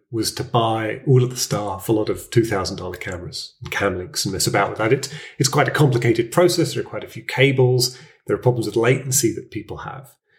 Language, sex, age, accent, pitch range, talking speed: English, male, 30-49, British, 120-155 Hz, 230 wpm